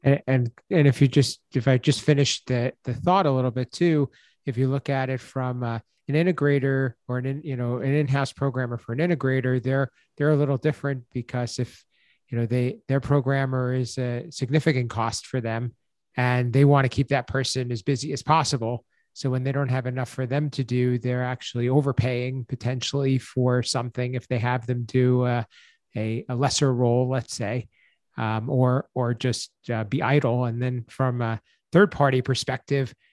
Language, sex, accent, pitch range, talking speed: English, male, American, 120-140 Hz, 195 wpm